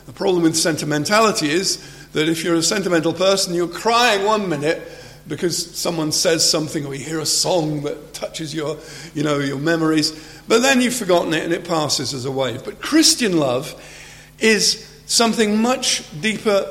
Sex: male